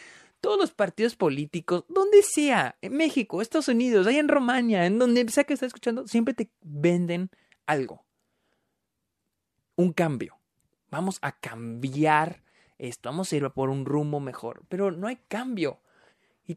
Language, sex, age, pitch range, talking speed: Spanish, male, 30-49, 145-185 Hz, 150 wpm